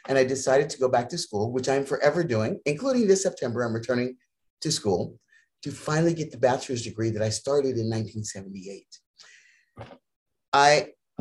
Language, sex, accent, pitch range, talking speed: English, male, American, 115-155 Hz, 160 wpm